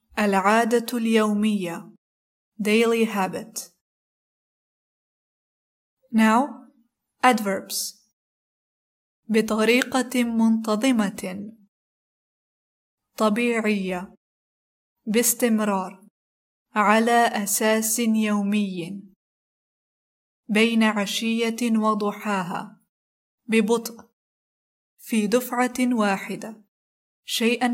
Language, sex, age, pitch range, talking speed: Arabic, female, 20-39, 205-235 Hz, 45 wpm